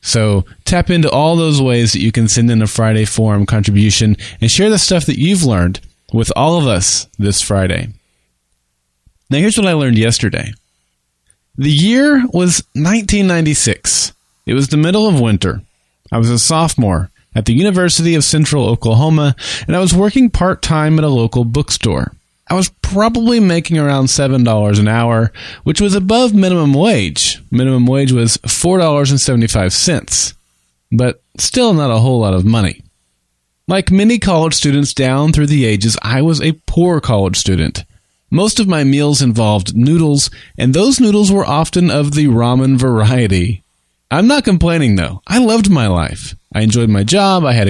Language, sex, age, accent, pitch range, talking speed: English, male, 20-39, American, 105-165 Hz, 165 wpm